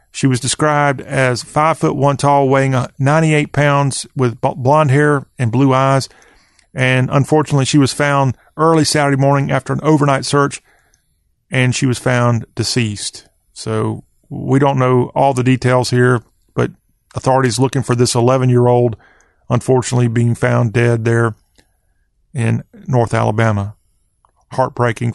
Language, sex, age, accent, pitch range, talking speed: English, male, 40-59, American, 125-150 Hz, 140 wpm